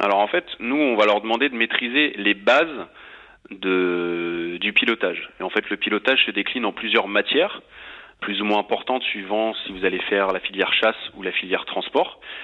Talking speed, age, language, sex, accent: 195 wpm, 30-49, French, male, French